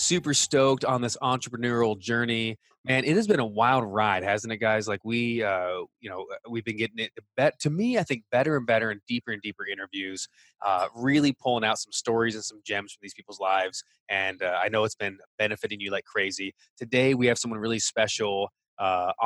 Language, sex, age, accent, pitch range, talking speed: English, male, 20-39, American, 105-125 Hz, 210 wpm